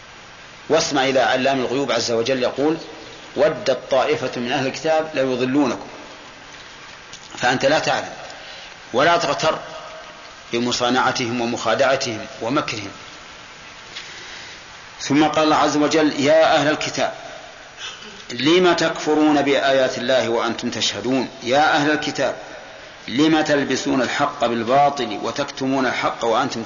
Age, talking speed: 40-59, 100 wpm